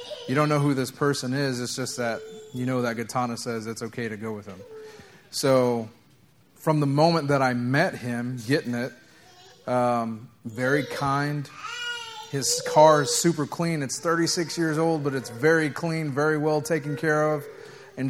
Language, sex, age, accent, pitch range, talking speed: English, male, 30-49, American, 115-145 Hz, 175 wpm